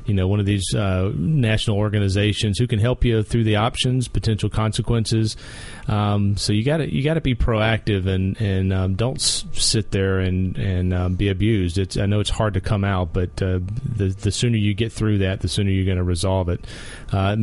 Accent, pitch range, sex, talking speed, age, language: American, 100-115 Hz, male, 220 wpm, 40-59, English